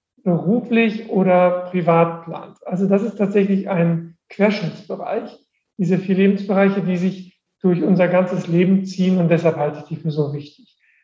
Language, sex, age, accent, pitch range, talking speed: German, male, 50-69, German, 175-195 Hz, 150 wpm